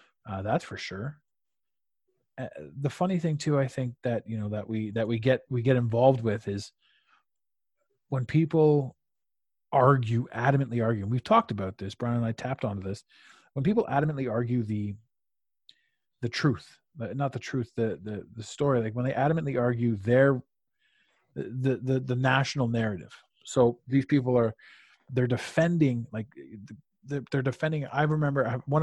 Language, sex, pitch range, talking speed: English, male, 115-145 Hz, 160 wpm